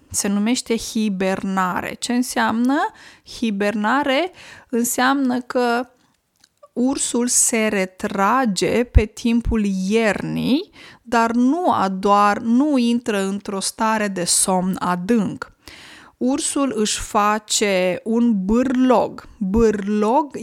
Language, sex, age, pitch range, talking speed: Romanian, female, 20-39, 205-245 Hz, 90 wpm